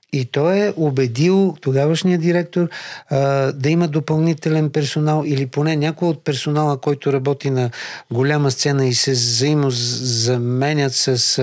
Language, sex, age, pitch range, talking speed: Bulgarian, male, 50-69, 130-165 Hz, 125 wpm